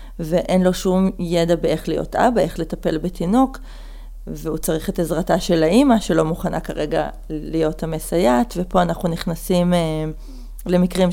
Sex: female